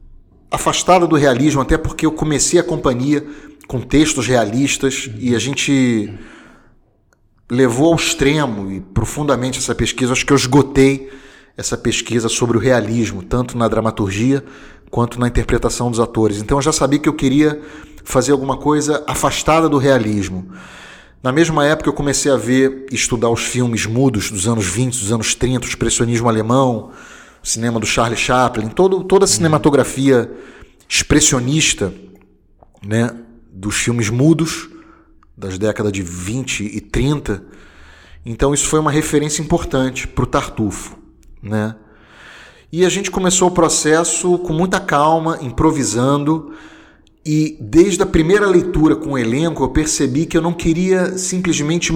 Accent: Brazilian